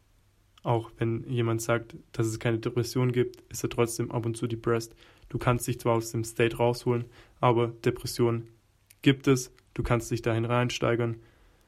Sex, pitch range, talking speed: male, 110-125 Hz, 170 wpm